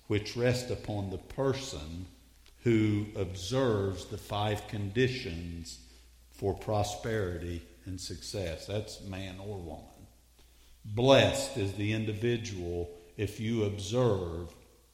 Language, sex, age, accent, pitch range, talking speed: English, male, 50-69, American, 70-110 Hz, 100 wpm